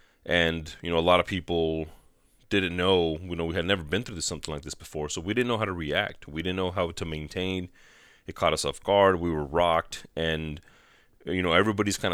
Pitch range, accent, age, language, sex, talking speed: 80-110 Hz, American, 30-49, English, male, 230 wpm